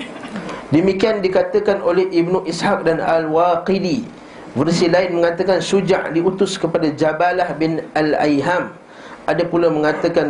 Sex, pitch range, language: male, 145-185 Hz, Malay